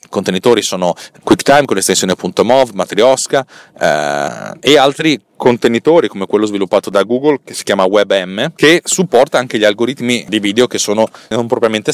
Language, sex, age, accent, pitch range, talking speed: Italian, male, 30-49, native, 100-130 Hz, 155 wpm